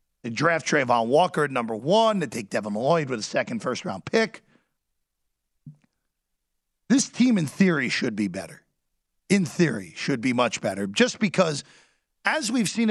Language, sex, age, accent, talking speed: English, male, 40-59, American, 160 wpm